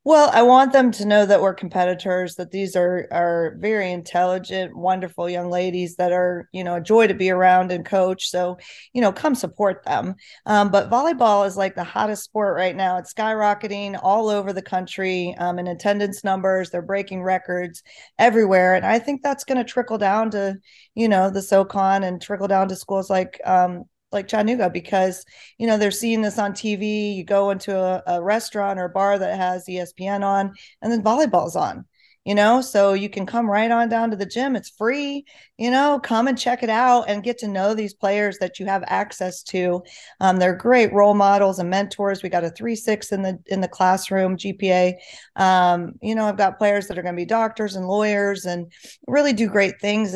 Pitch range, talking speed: 185-215 Hz, 210 wpm